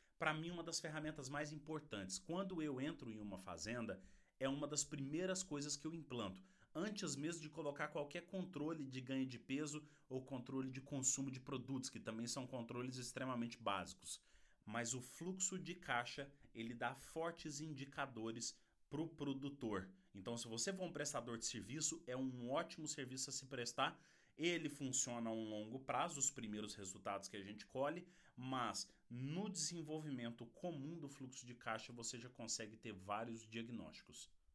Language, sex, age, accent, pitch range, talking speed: English, male, 30-49, Brazilian, 110-150 Hz, 165 wpm